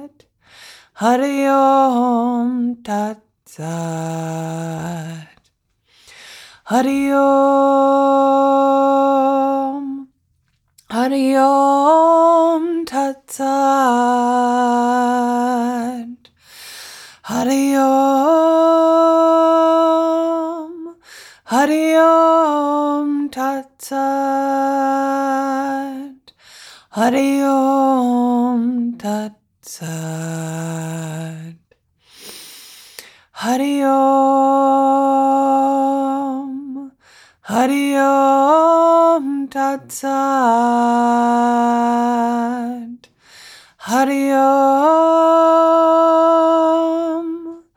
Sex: female